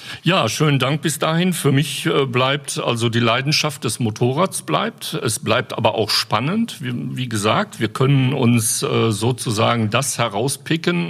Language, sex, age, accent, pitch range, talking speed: German, male, 50-69, German, 110-140 Hz, 160 wpm